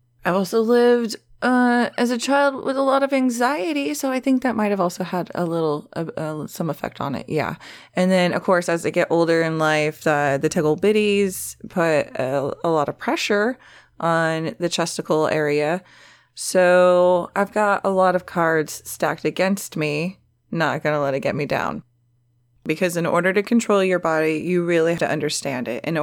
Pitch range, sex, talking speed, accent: 160-205 Hz, female, 195 wpm, American